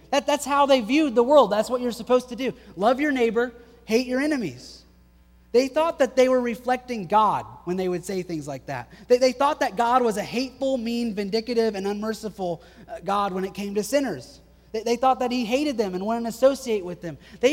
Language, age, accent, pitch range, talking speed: English, 30-49, American, 165-240 Hz, 215 wpm